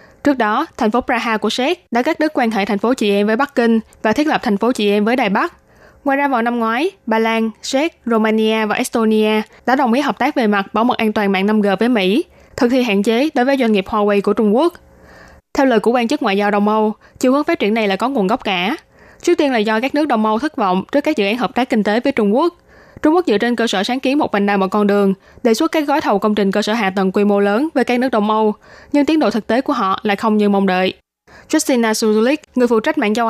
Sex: female